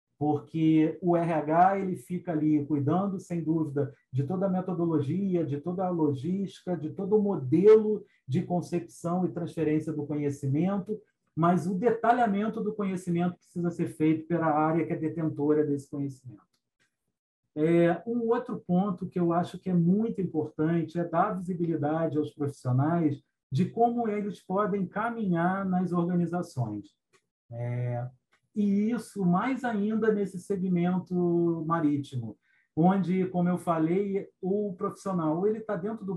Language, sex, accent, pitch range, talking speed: Portuguese, male, Brazilian, 155-200 Hz, 135 wpm